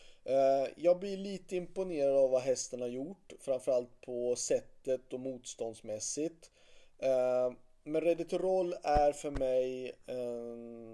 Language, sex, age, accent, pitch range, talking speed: Swedish, male, 30-49, native, 120-170 Hz, 110 wpm